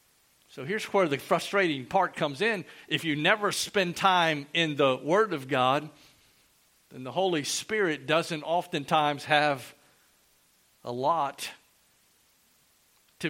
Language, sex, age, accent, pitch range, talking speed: English, male, 50-69, American, 135-170 Hz, 125 wpm